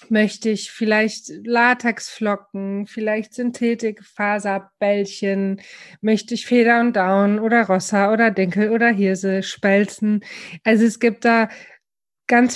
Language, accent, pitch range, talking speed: German, German, 195-225 Hz, 115 wpm